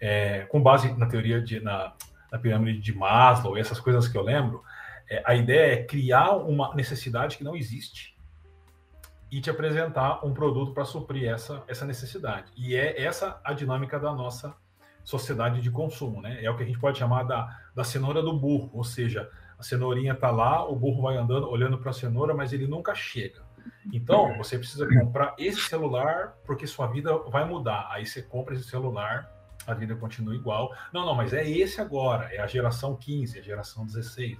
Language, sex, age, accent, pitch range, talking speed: Portuguese, male, 40-59, Brazilian, 110-140 Hz, 195 wpm